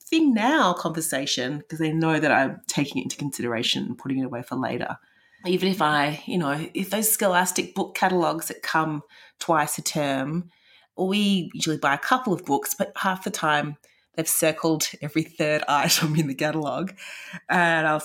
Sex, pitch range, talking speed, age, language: female, 150-210 Hz, 180 wpm, 30-49, English